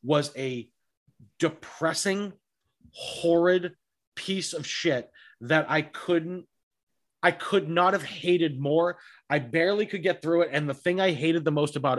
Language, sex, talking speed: English, male, 150 wpm